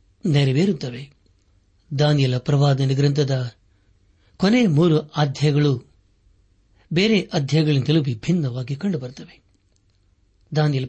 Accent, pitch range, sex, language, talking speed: native, 100-150 Hz, male, Kannada, 65 wpm